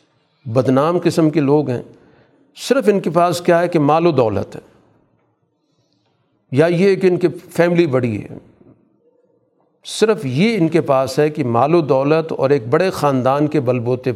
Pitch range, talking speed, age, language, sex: 130-165 Hz, 170 wpm, 50-69, Urdu, male